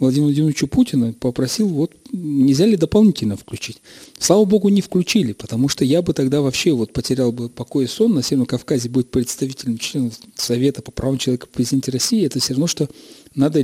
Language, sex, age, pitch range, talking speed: Russian, male, 40-59, 125-170 Hz, 185 wpm